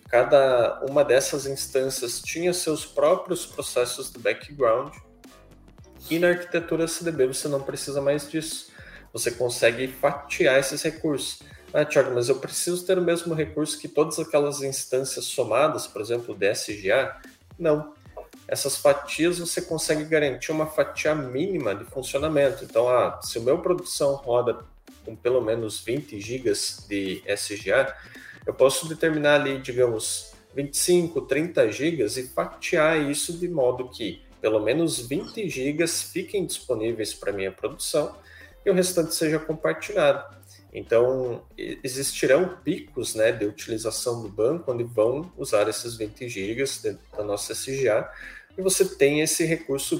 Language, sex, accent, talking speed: English, male, Brazilian, 145 wpm